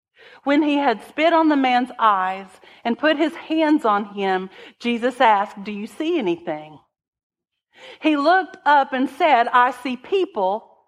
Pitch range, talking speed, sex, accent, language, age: 195-265 Hz, 155 wpm, female, American, English, 50-69